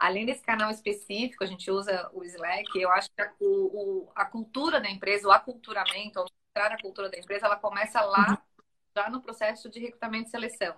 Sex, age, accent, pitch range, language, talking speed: female, 30-49, Brazilian, 190-230 Hz, Portuguese, 195 wpm